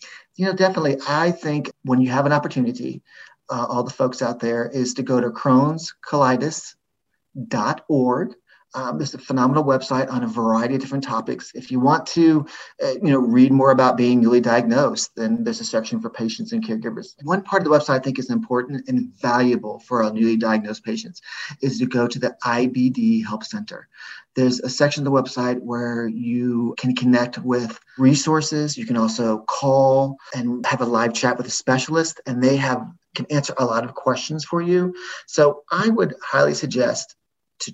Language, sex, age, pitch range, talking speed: English, male, 30-49, 120-145 Hz, 190 wpm